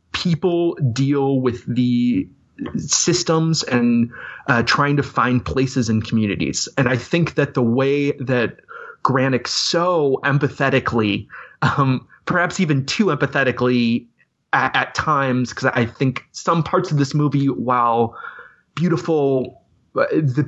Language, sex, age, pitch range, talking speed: English, male, 30-49, 120-155 Hz, 125 wpm